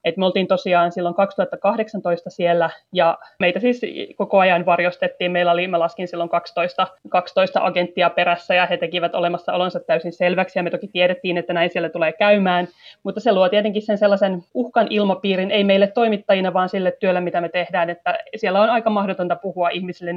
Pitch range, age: 175-205 Hz, 30-49